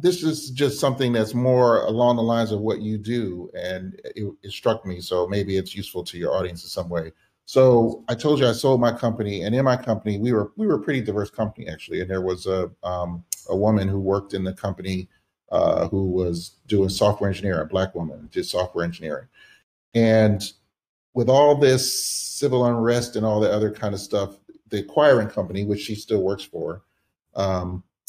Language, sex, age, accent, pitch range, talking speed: English, male, 30-49, American, 95-120 Hz, 205 wpm